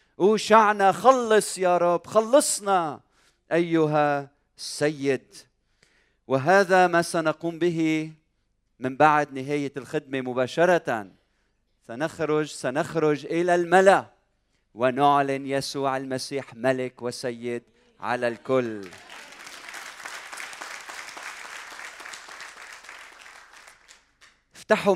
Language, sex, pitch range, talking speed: Arabic, male, 125-170 Hz, 65 wpm